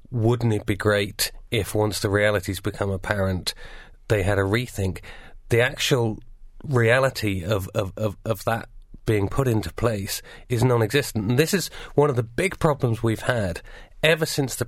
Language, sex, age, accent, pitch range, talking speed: English, male, 40-59, British, 105-130 Hz, 170 wpm